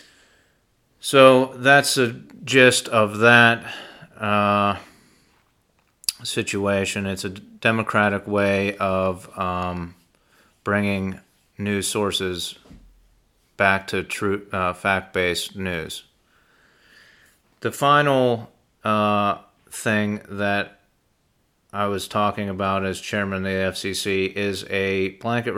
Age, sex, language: 30-49, male, English